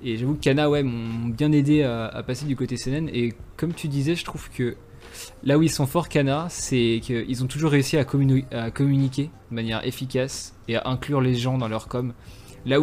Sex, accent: male, French